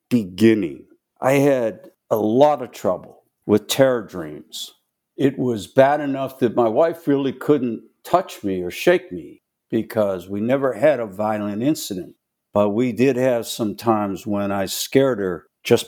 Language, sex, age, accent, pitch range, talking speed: English, male, 60-79, American, 105-140 Hz, 160 wpm